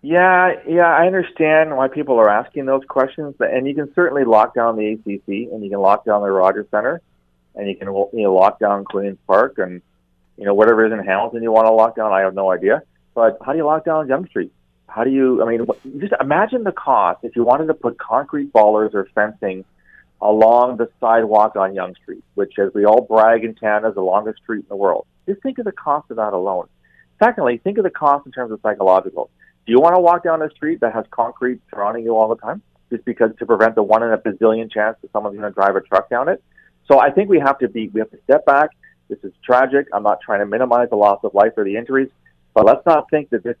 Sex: male